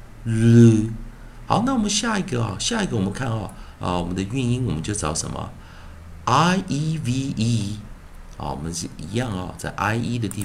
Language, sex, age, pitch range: Chinese, male, 50-69, 90-125 Hz